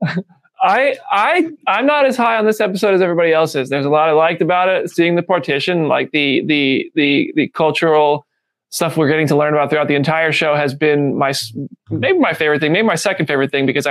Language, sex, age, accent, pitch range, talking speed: English, male, 20-39, American, 150-180 Hz, 225 wpm